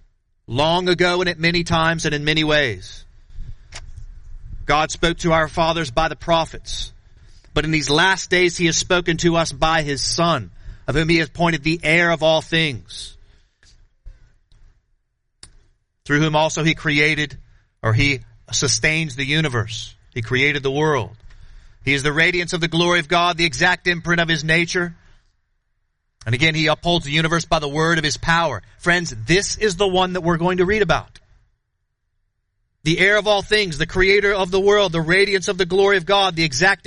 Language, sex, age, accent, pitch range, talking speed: English, male, 40-59, American, 110-175 Hz, 180 wpm